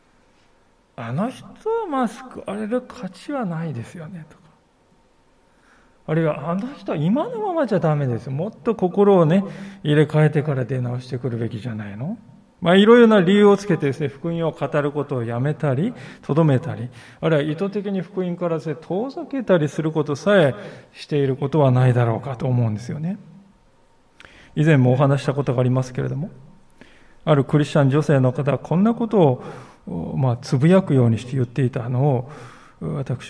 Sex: male